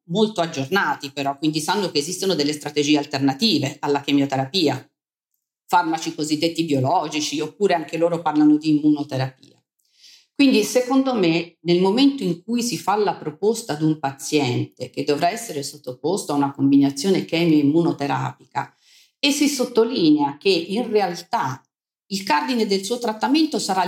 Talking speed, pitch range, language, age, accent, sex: 140 wpm, 150-210 Hz, Italian, 40-59, native, female